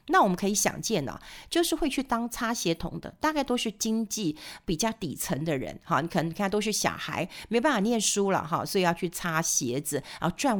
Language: Chinese